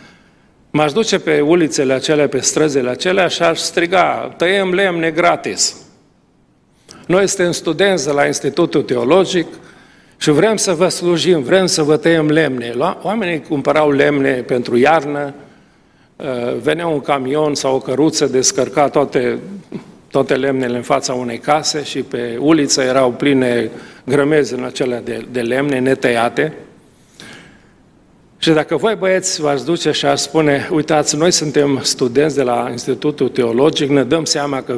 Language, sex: Romanian, male